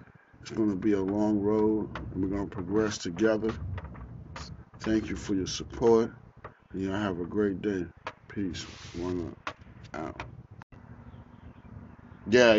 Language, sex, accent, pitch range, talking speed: English, male, American, 90-115 Hz, 140 wpm